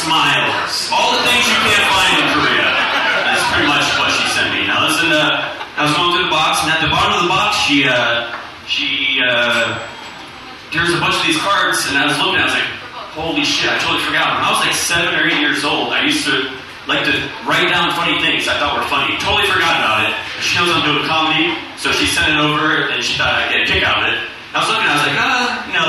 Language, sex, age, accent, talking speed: English, male, 20-39, American, 255 wpm